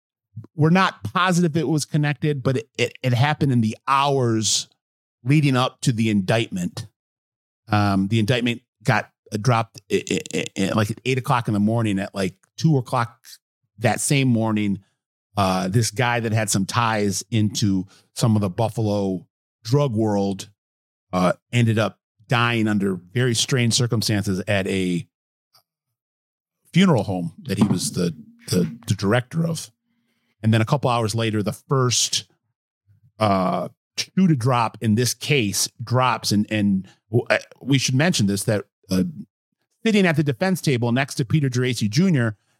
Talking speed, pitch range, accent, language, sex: 155 wpm, 105-135 Hz, American, English, male